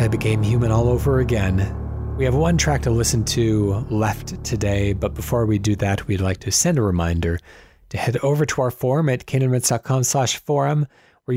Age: 30-49